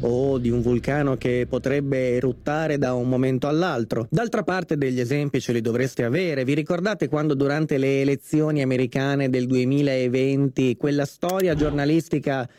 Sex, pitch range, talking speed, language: male, 135-170 Hz, 150 wpm, Italian